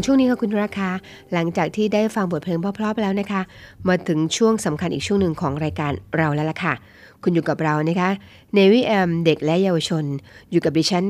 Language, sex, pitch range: Thai, female, 155-200 Hz